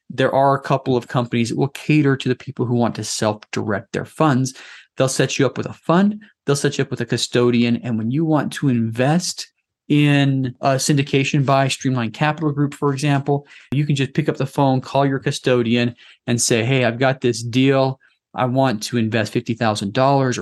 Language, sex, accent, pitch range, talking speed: English, male, American, 120-140 Hz, 205 wpm